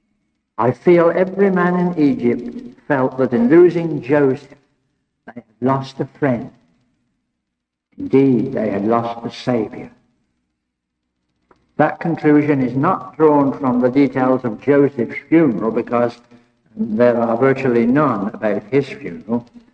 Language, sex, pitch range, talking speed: English, male, 120-170 Hz, 125 wpm